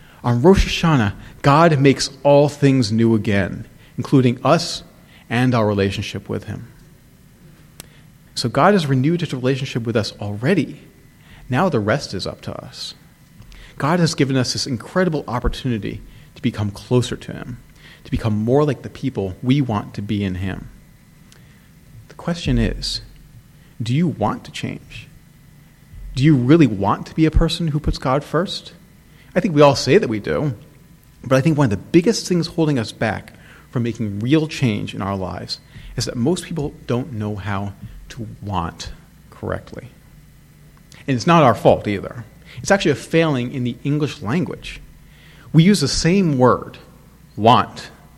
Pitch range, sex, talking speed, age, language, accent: 115-155 Hz, male, 165 wpm, 40-59, English, American